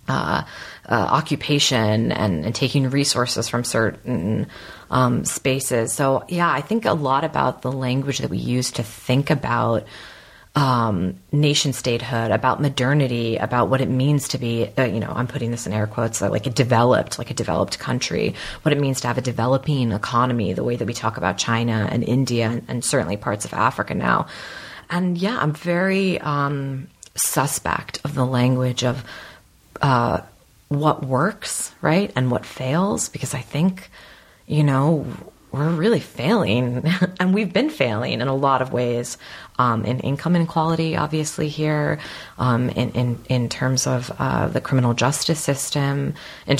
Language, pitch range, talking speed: English, 120-150 Hz, 165 wpm